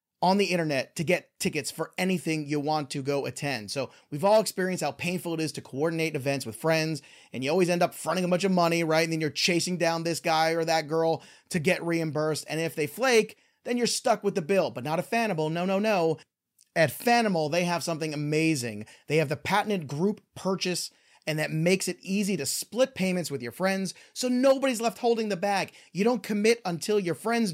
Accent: American